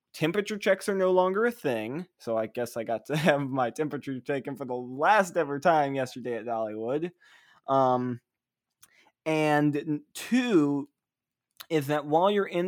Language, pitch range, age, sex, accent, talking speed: English, 120-150 Hz, 20-39, male, American, 155 wpm